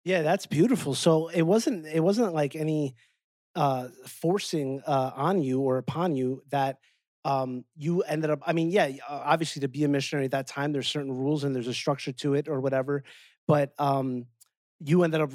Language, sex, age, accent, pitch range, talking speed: English, male, 30-49, American, 130-160 Hz, 195 wpm